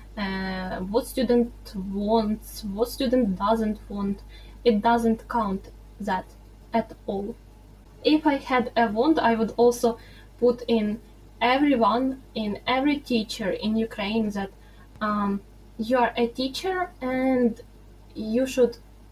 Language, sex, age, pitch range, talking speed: English, female, 10-29, 210-250 Hz, 120 wpm